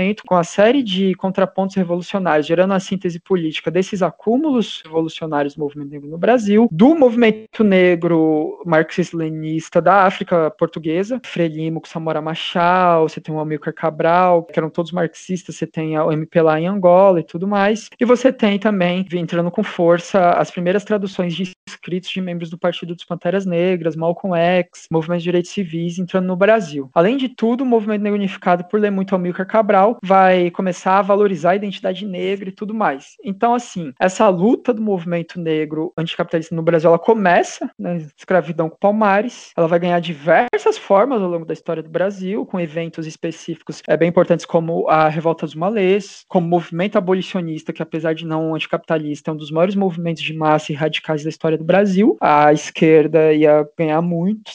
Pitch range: 160-195 Hz